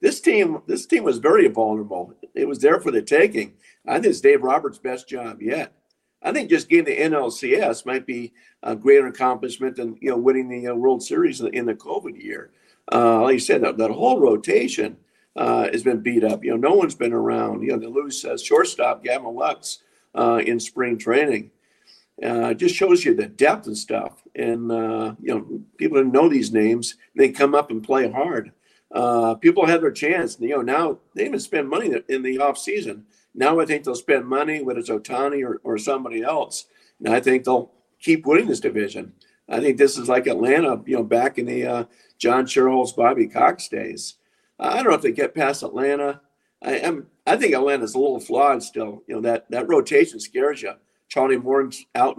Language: English